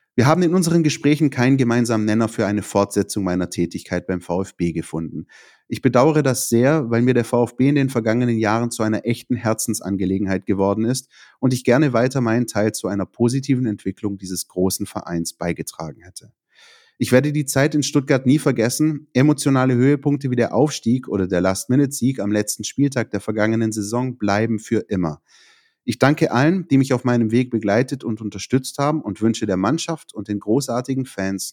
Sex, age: male, 30-49